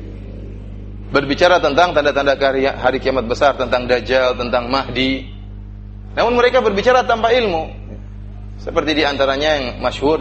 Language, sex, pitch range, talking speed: Indonesian, male, 100-135 Hz, 130 wpm